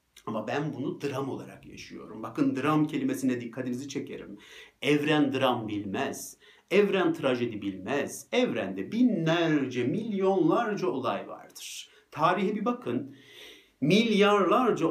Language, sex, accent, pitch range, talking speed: Turkish, male, native, 120-185 Hz, 105 wpm